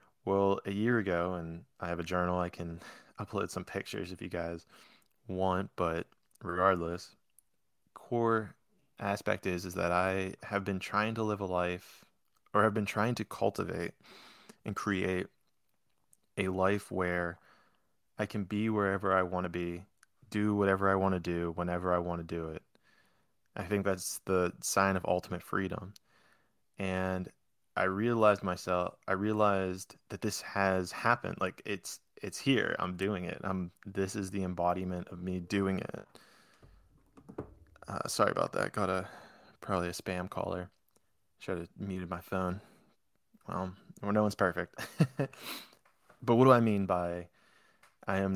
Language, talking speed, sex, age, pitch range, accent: English, 155 wpm, male, 20-39, 90-100 Hz, American